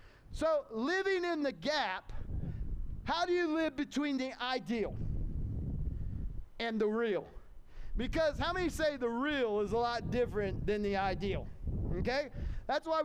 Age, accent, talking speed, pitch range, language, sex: 40-59, American, 145 wpm, 215-290 Hz, English, male